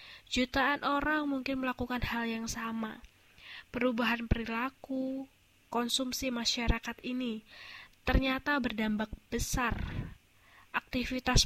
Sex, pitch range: female, 225-255 Hz